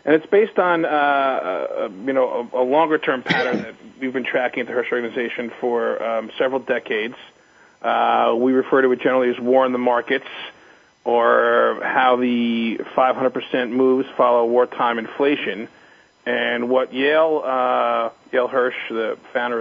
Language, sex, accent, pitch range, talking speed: English, male, American, 115-135 Hz, 150 wpm